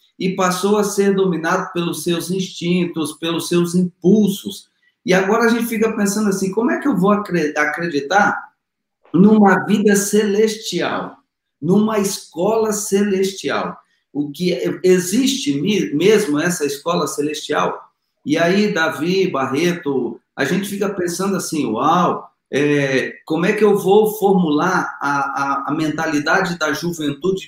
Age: 40-59